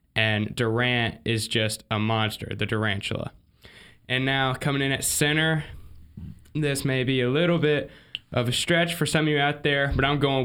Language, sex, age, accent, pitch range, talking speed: English, male, 20-39, American, 125-170 Hz, 185 wpm